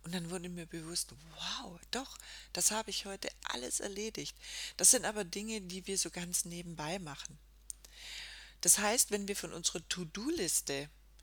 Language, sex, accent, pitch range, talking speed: German, female, German, 150-205 Hz, 160 wpm